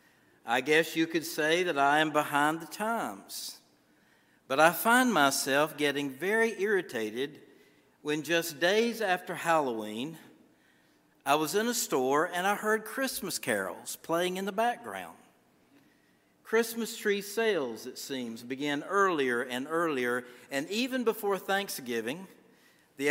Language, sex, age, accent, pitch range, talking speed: English, male, 60-79, American, 135-175 Hz, 130 wpm